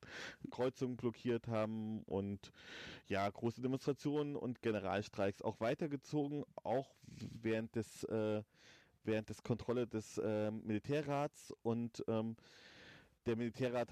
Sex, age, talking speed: male, 30-49, 110 wpm